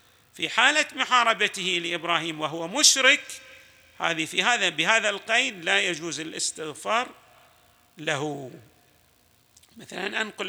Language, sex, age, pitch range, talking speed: Arabic, male, 50-69, 160-205 Hz, 95 wpm